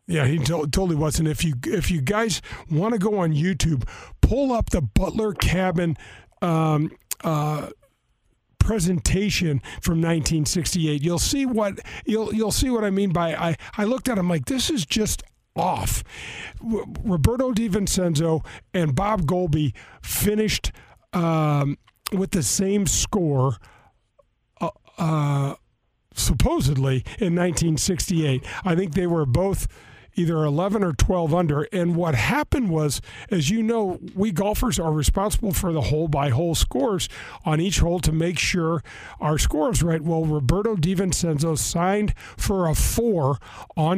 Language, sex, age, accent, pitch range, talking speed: English, male, 50-69, American, 150-190 Hz, 145 wpm